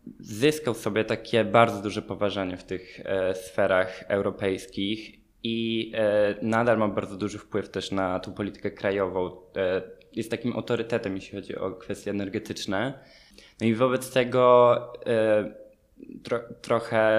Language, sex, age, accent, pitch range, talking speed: Polish, male, 20-39, native, 100-115 Hz, 120 wpm